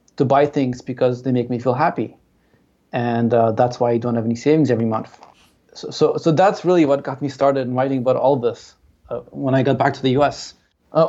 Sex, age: male, 20-39